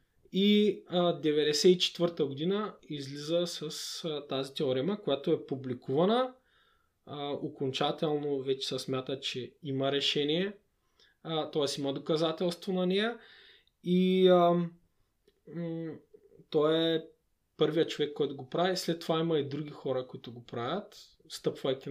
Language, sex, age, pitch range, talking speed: Bulgarian, male, 20-39, 145-185 Hz, 125 wpm